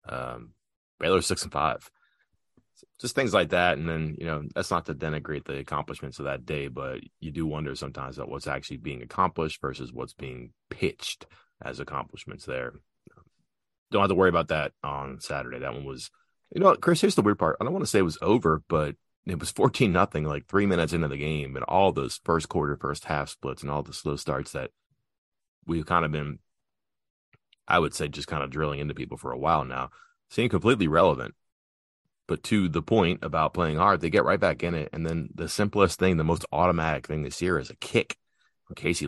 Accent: American